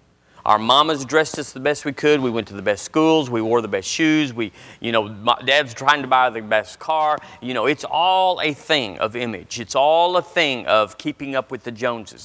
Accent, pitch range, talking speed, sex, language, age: American, 115-160 Hz, 235 wpm, male, English, 40-59